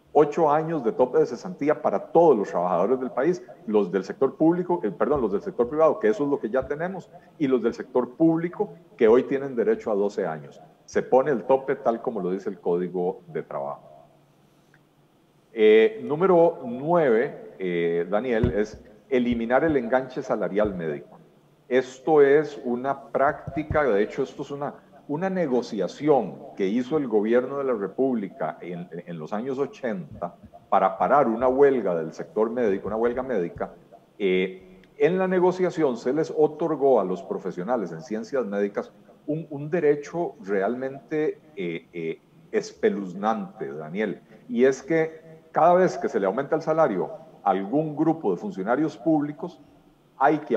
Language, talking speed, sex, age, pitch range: Spanish, 165 wpm, male, 50-69, 115-160 Hz